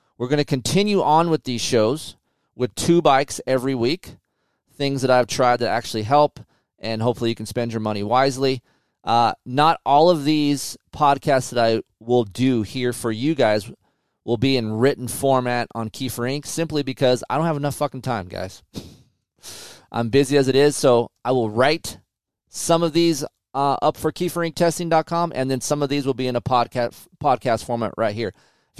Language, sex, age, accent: English, male, 30-49, American